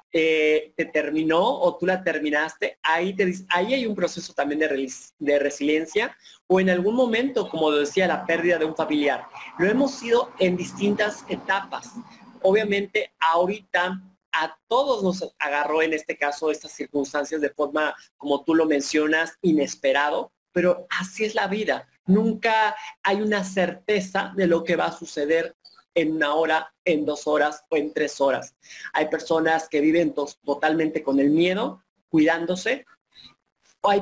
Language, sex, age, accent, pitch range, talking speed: Spanish, male, 40-59, Mexican, 155-200 Hz, 155 wpm